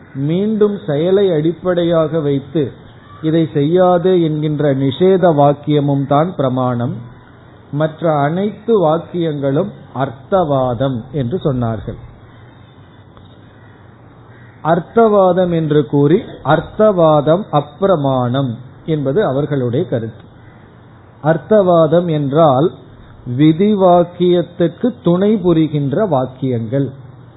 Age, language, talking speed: 50-69, Tamil, 70 wpm